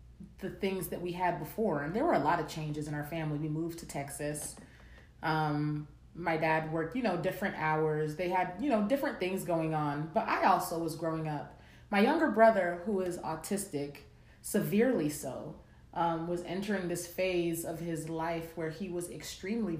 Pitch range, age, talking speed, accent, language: 145-175 Hz, 30-49, 190 wpm, American, English